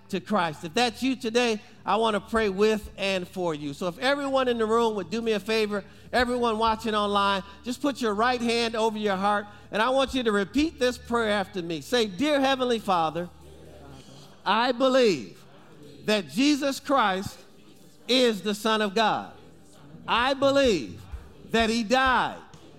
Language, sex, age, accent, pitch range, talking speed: English, male, 50-69, American, 175-240 Hz, 170 wpm